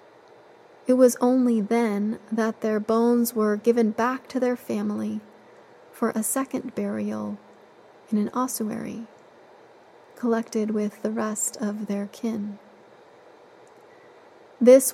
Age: 30-49